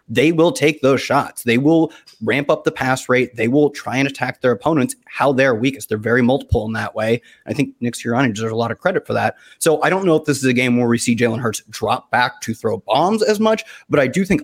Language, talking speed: English, 265 wpm